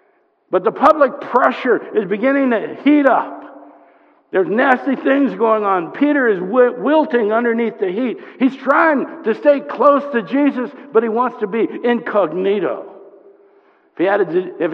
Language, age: English, 60-79